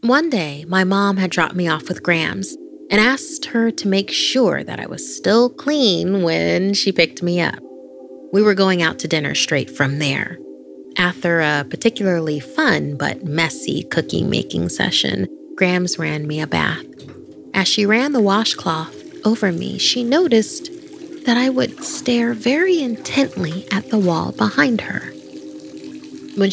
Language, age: English, 30-49